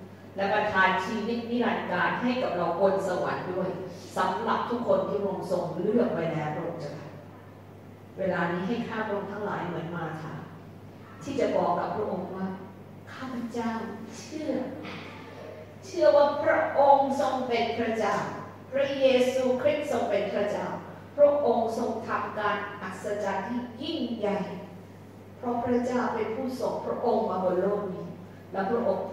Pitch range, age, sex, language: 195-255 Hz, 40-59, female, English